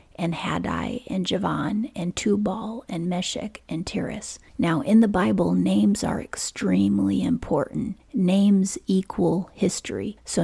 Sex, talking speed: female, 125 wpm